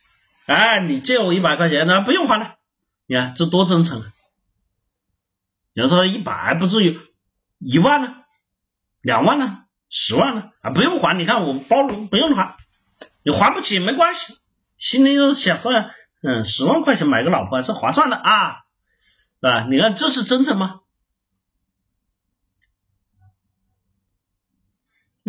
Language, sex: Chinese, male